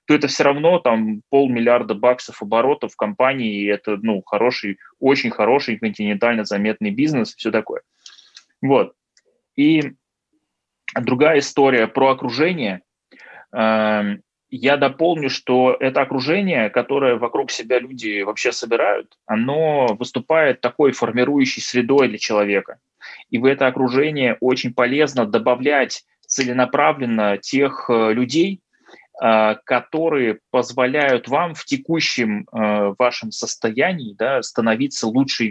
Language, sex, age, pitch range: Russian, male, 20-39, 110-140 Hz